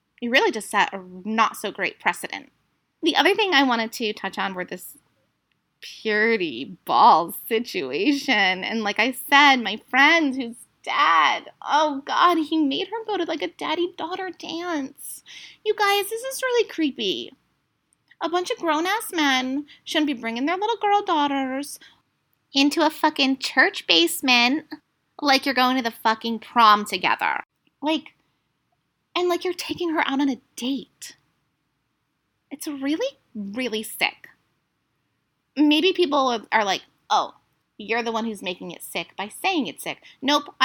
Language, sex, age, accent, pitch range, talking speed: English, female, 20-39, American, 225-335 Hz, 150 wpm